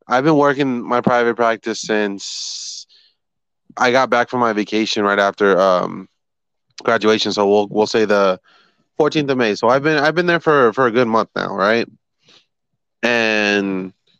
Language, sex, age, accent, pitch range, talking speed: English, male, 20-39, American, 105-130 Hz, 165 wpm